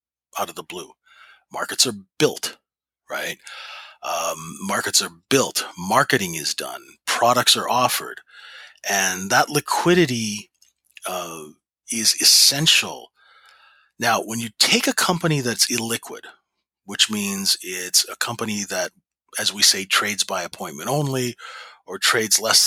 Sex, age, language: male, 30-49, English